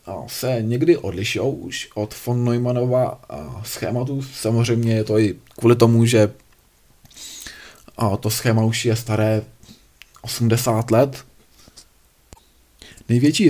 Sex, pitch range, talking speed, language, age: male, 115-130 Hz, 100 wpm, Czech, 20-39